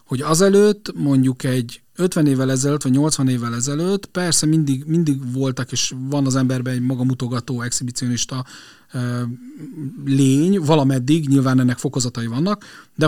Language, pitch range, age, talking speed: Hungarian, 125-155 Hz, 30-49, 135 wpm